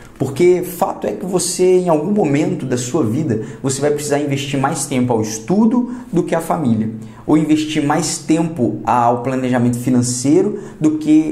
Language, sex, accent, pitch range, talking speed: Portuguese, male, Brazilian, 125-175 Hz, 170 wpm